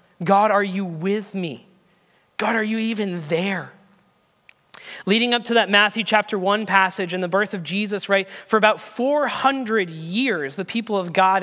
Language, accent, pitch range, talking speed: English, American, 175-215 Hz, 170 wpm